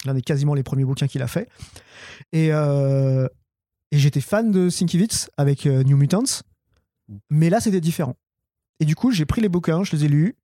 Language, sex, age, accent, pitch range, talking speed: French, male, 30-49, French, 140-170 Hz, 195 wpm